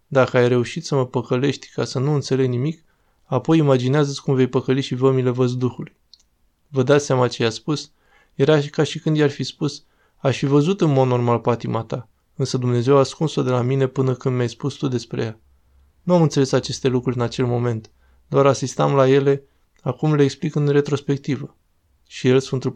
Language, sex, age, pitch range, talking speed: Romanian, male, 20-39, 125-140 Hz, 205 wpm